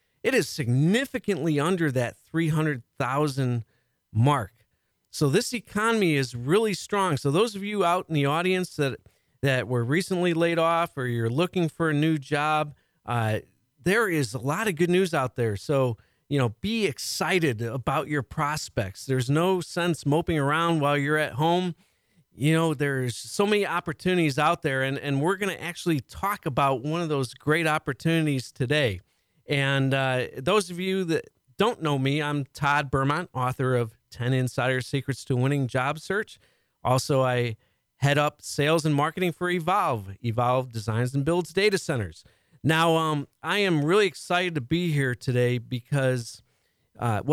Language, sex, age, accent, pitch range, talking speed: English, male, 40-59, American, 125-170 Hz, 165 wpm